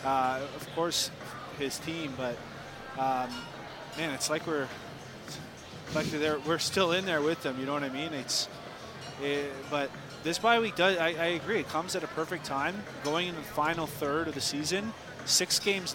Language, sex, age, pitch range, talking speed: English, male, 30-49, 145-180 Hz, 190 wpm